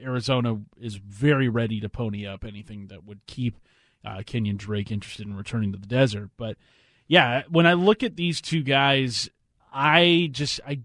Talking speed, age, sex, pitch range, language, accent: 175 wpm, 30-49, male, 110-145 Hz, English, American